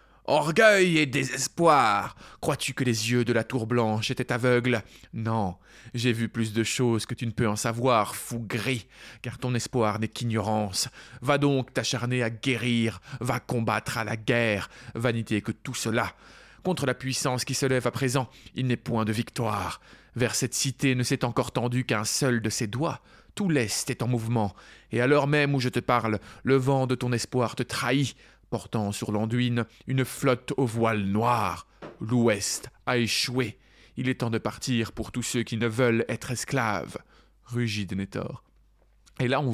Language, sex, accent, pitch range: French, male, French, 115-135 Hz